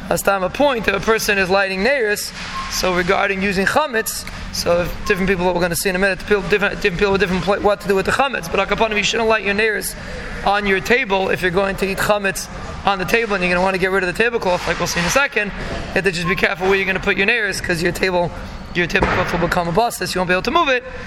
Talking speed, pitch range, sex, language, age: 300 wpm, 190-220 Hz, male, English, 20-39